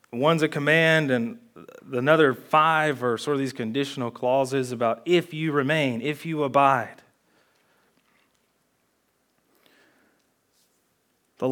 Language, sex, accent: English, male, American